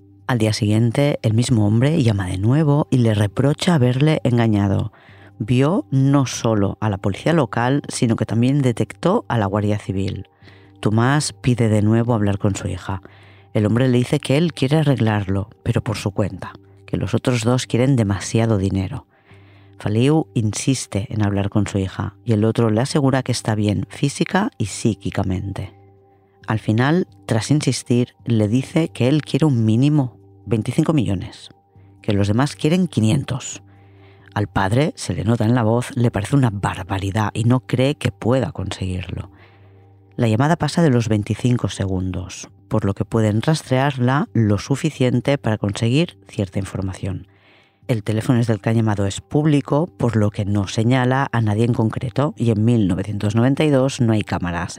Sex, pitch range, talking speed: female, 100-130 Hz, 165 wpm